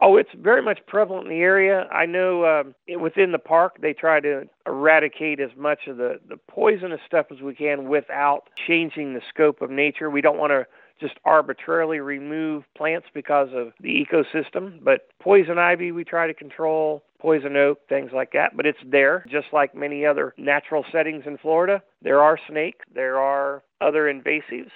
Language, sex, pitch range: English, male, 140-170 Hz